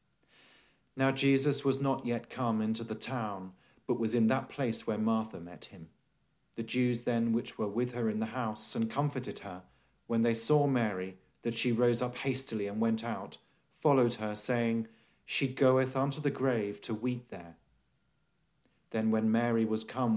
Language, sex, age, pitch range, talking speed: English, male, 40-59, 110-130 Hz, 175 wpm